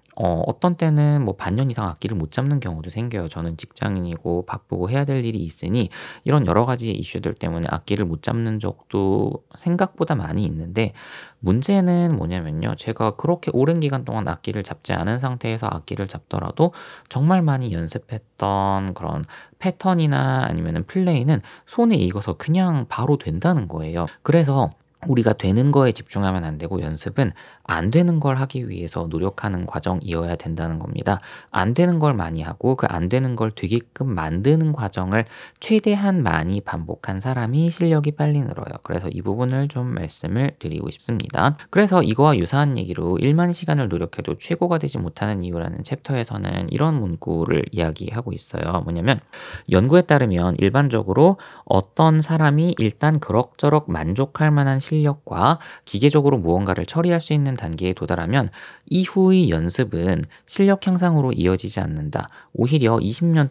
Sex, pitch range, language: male, 95-150 Hz, Korean